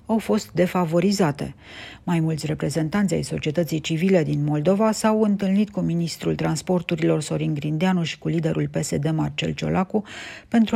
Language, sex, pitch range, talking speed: Romanian, female, 150-190 Hz, 140 wpm